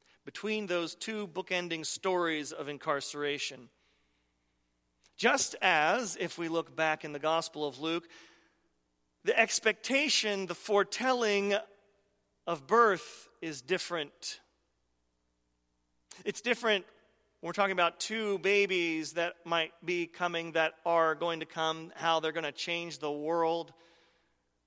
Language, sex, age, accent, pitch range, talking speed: English, male, 40-59, American, 125-185 Hz, 120 wpm